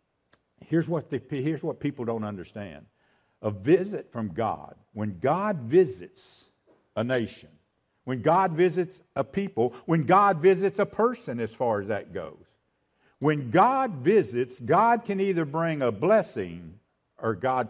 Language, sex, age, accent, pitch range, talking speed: English, male, 60-79, American, 110-185 Hz, 140 wpm